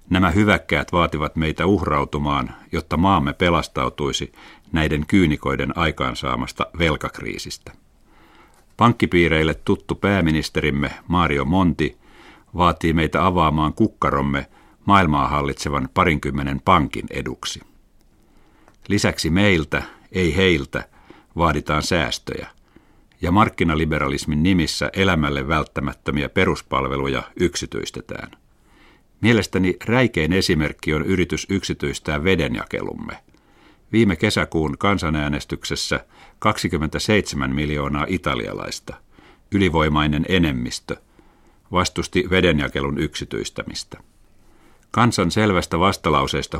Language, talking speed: Finnish, 75 wpm